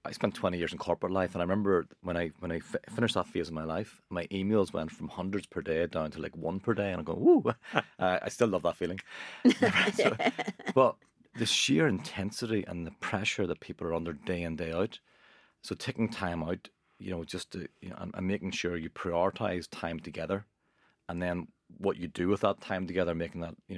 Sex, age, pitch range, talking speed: male, 30-49, 85-95 Hz, 225 wpm